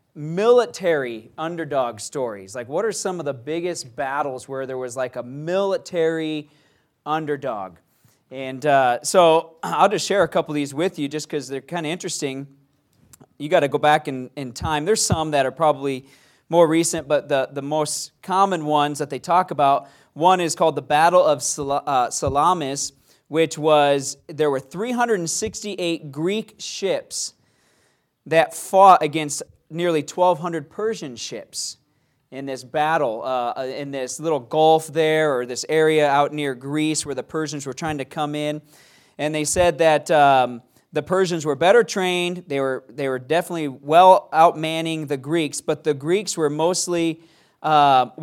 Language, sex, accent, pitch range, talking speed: English, male, American, 140-170 Hz, 165 wpm